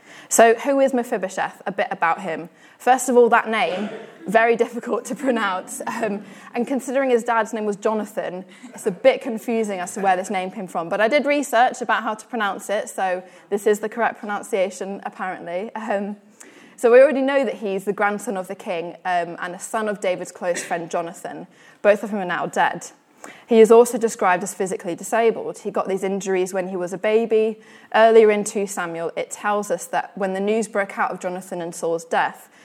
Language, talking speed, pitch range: English, 210 wpm, 185-225 Hz